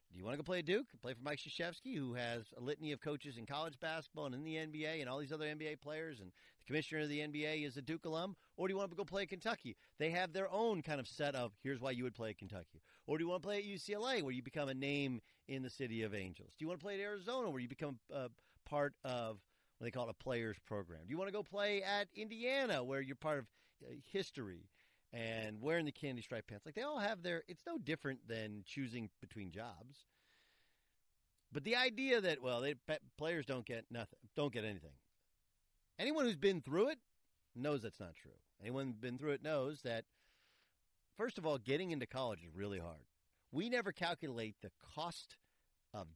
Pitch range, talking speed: 110-160 Hz, 235 wpm